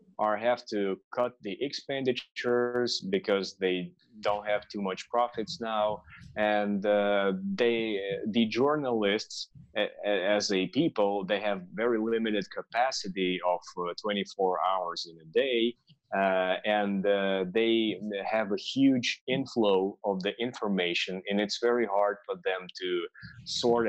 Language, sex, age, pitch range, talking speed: English, male, 30-49, 100-120 Hz, 140 wpm